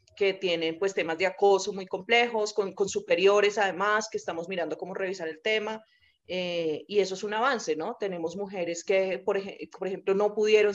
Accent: Colombian